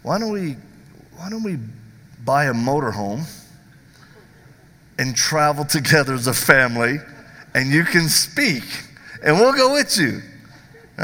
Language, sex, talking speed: English, male, 135 wpm